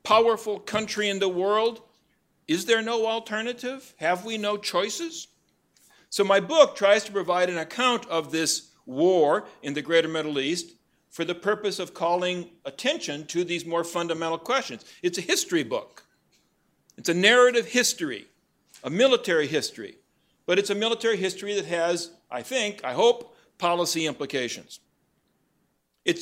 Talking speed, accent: 150 wpm, American